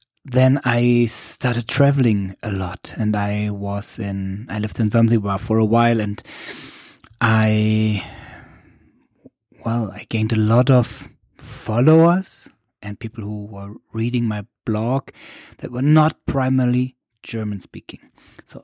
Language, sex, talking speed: English, male, 130 wpm